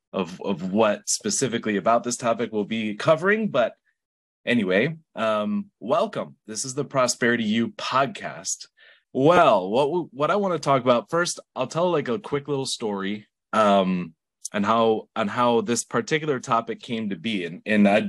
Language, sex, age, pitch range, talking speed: English, male, 20-39, 100-130 Hz, 165 wpm